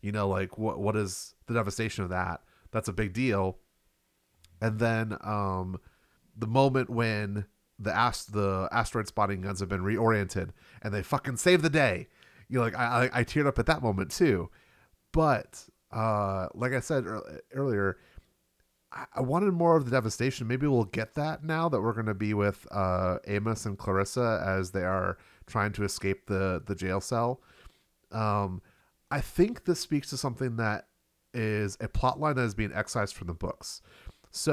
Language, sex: English, male